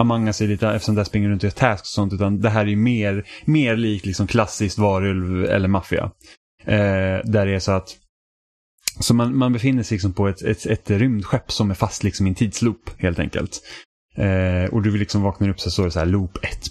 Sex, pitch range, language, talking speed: male, 95-110 Hz, Swedish, 225 wpm